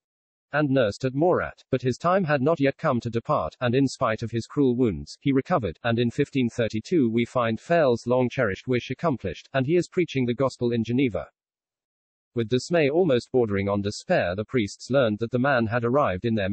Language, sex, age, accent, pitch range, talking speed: English, male, 40-59, British, 115-140 Hz, 200 wpm